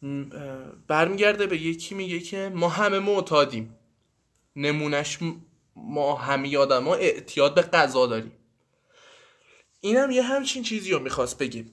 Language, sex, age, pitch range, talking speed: Persian, male, 20-39, 135-190 Hz, 115 wpm